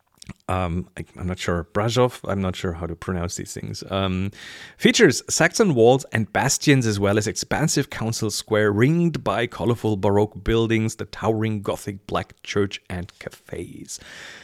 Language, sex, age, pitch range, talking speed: English, male, 40-59, 95-145 Hz, 155 wpm